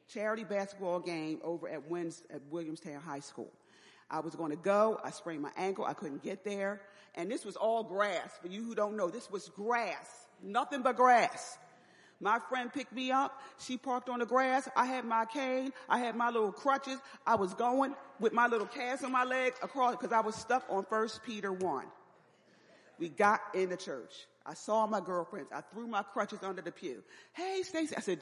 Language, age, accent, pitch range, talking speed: English, 40-59, American, 195-265 Hz, 205 wpm